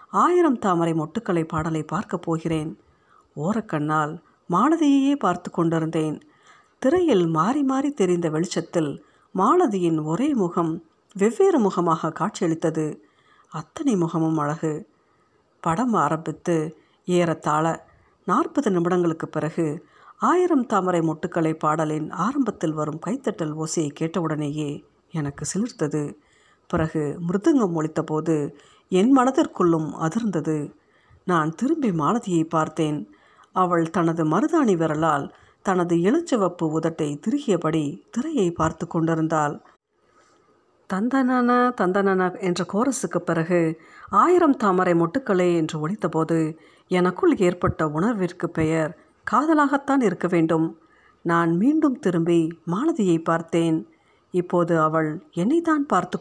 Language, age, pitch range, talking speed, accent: Tamil, 50-69, 160-215 Hz, 95 wpm, native